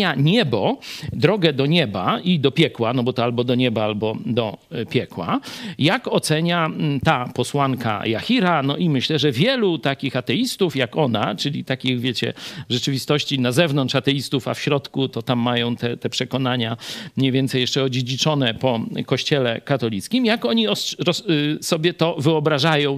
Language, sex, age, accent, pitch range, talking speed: Polish, male, 50-69, native, 125-175 Hz, 155 wpm